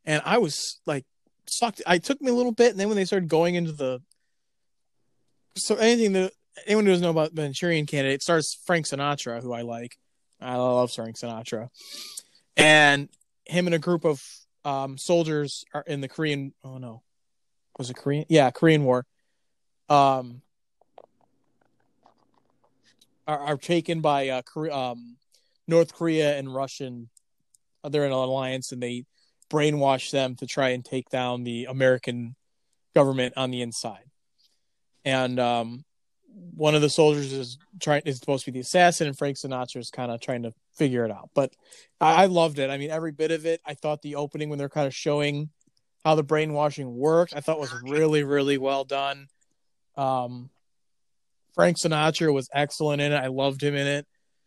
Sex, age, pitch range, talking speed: male, 20-39, 130-160 Hz, 175 wpm